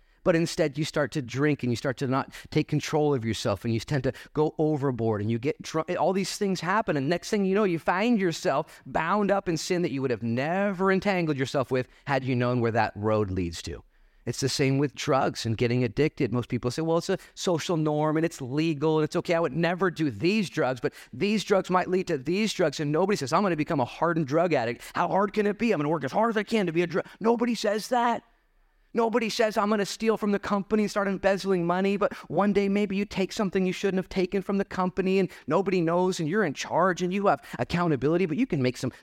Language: English